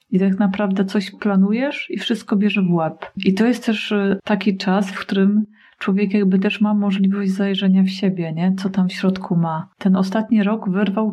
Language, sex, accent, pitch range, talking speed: Polish, female, native, 185-210 Hz, 195 wpm